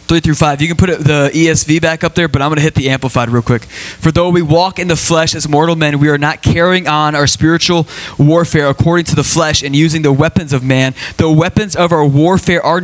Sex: male